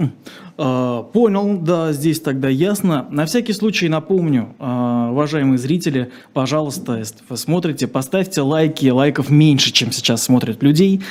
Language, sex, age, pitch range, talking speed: Russian, male, 20-39, 125-155 Hz, 115 wpm